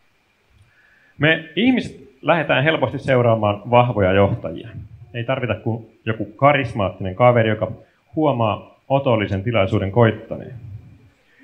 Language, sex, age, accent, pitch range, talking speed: Finnish, male, 30-49, native, 105-125 Hz, 95 wpm